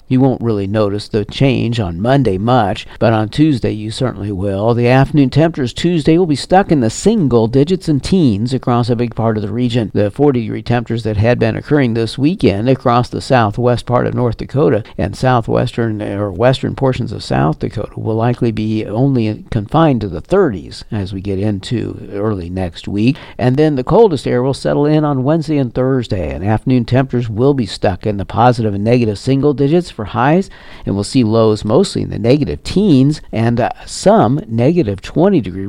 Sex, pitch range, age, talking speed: male, 110-135 Hz, 60-79, 195 wpm